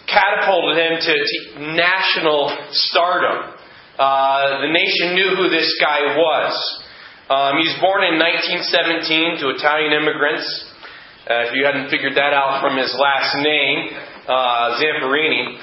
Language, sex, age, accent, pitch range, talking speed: English, male, 30-49, American, 145-180 Hz, 135 wpm